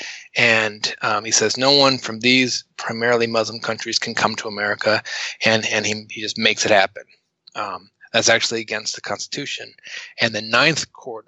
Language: English